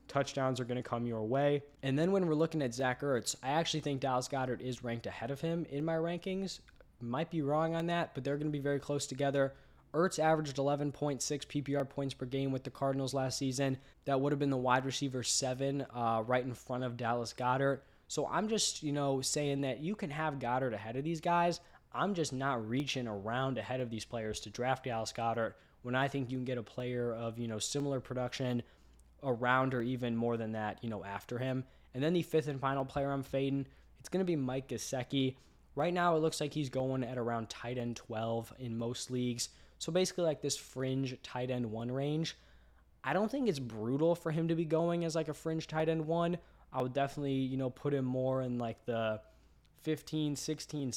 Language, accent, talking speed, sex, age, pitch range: English, American, 220 wpm, male, 10-29, 120-150 Hz